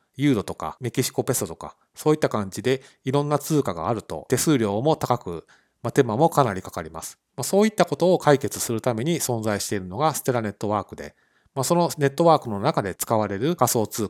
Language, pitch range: Japanese, 105-155 Hz